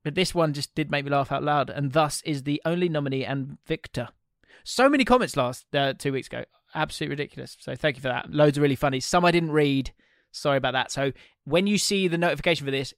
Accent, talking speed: British, 240 wpm